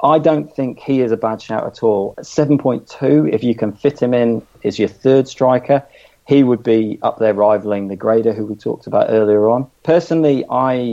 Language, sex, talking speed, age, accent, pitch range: English, male, 215 wpm, 40-59, British, 105-130 Hz